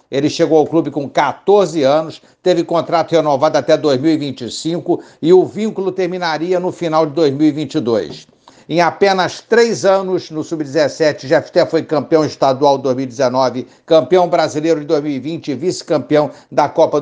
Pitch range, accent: 145-180 Hz, Brazilian